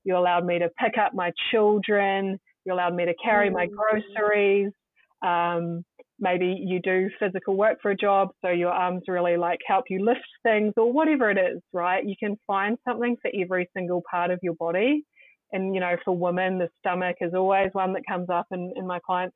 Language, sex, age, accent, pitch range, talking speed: English, female, 30-49, Australian, 180-215 Hz, 205 wpm